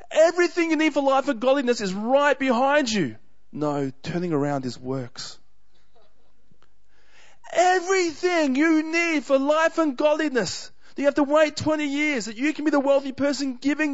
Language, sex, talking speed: English, male, 165 wpm